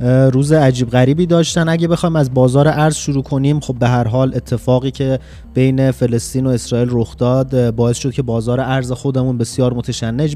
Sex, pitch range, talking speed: male, 125-145 Hz, 180 wpm